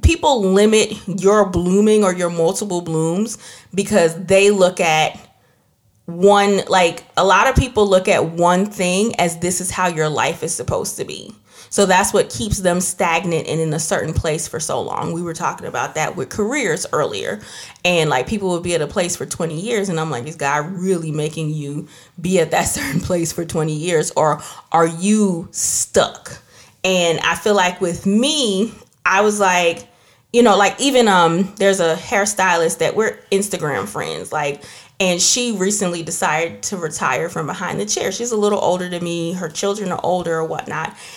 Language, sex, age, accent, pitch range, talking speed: English, female, 30-49, American, 170-210 Hz, 190 wpm